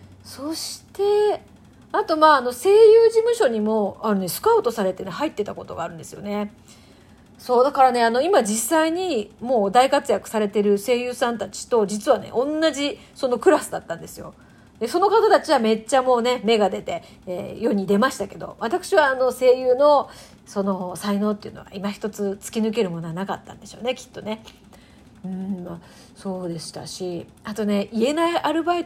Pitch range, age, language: 200-285 Hz, 40-59, Japanese